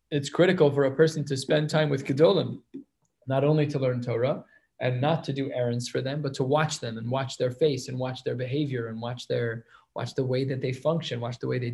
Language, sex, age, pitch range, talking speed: English, male, 20-39, 130-155 Hz, 240 wpm